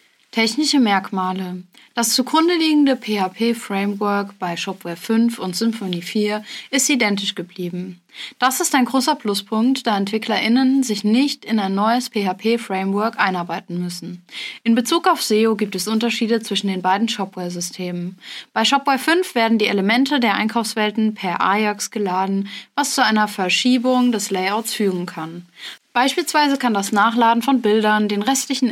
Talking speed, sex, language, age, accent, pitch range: 140 wpm, female, German, 20-39, German, 200-255 Hz